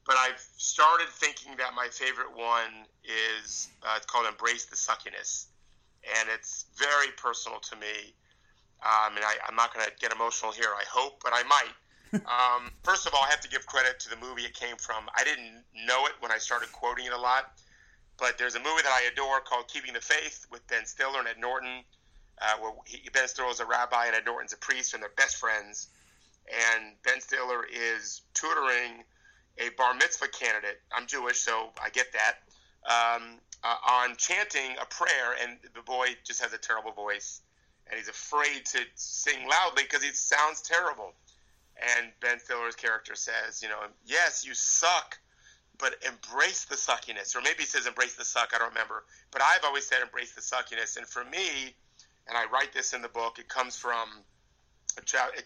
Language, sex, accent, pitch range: English, male, American, 110-130 Hz